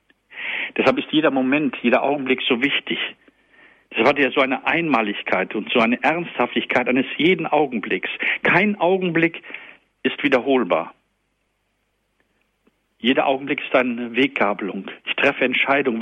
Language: German